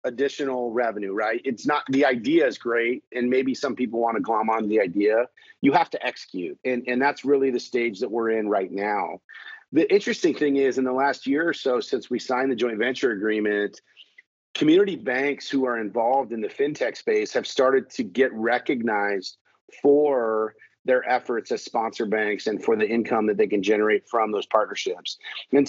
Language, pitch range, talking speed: English, 115-145 Hz, 195 wpm